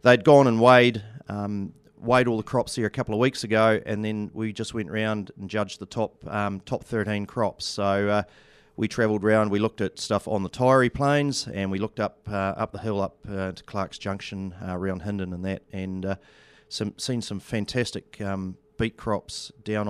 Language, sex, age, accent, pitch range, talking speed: English, male, 40-59, Australian, 95-110 Hz, 210 wpm